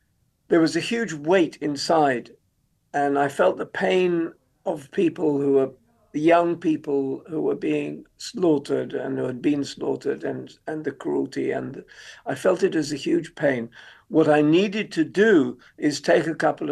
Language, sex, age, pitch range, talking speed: English, male, 50-69, 145-215 Hz, 175 wpm